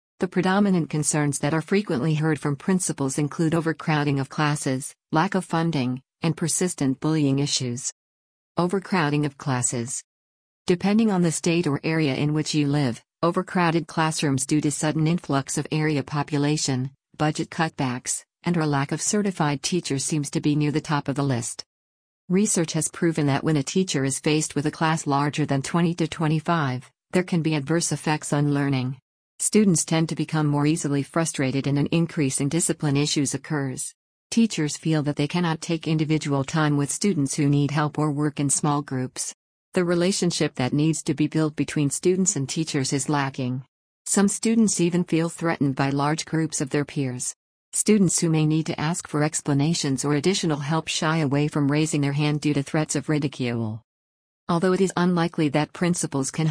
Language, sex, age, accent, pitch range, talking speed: English, female, 50-69, American, 140-165 Hz, 175 wpm